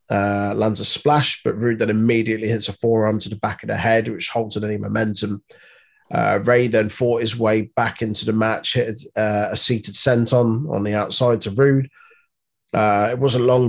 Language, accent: English, British